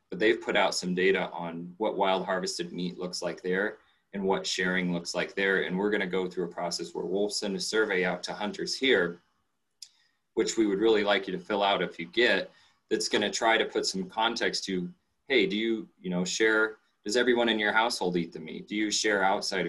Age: 30-49